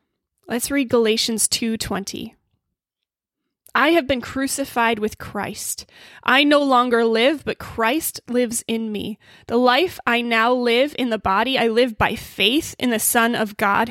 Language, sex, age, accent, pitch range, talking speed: English, female, 20-39, American, 225-280 Hz, 155 wpm